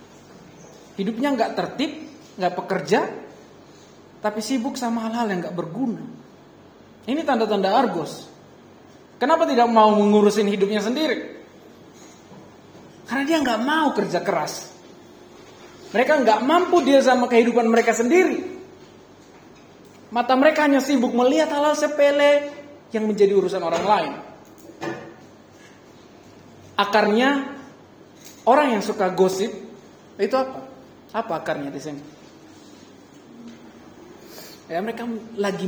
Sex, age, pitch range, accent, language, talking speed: male, 20-39, 180-260 Hz, native, Indonesian, 100 wpm